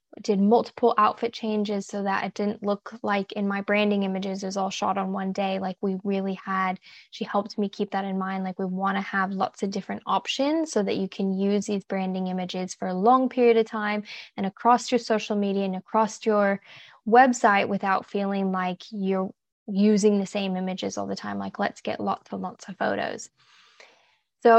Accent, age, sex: American, 10-29, female